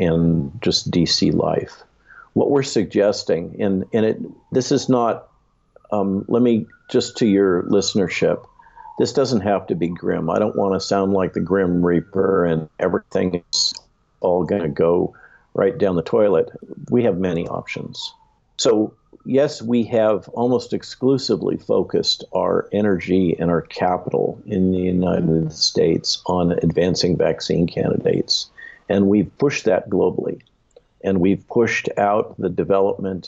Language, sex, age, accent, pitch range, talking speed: English, male, 50-69, American, 90-115 Hz, 140 wpm